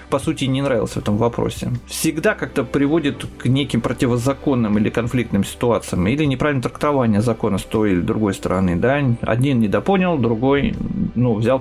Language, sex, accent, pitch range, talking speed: Russian, male, native, 110-145 Hz, 160 wpm